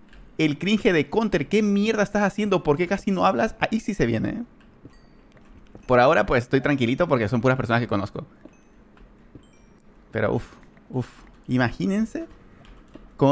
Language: Spanish